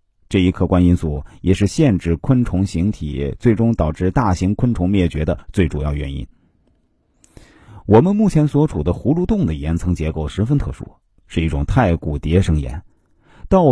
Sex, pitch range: male, 85-125 Hz